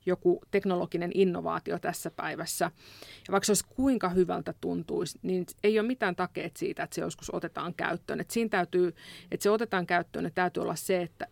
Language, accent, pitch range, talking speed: Finnish, native, 180-215 Hz, 185 wpm